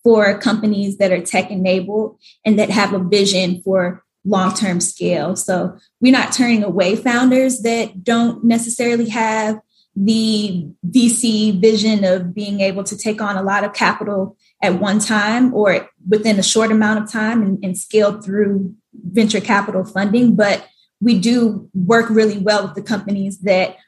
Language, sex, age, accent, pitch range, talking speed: English, female, 10-29, American, 190-220 Hz, 160 wpm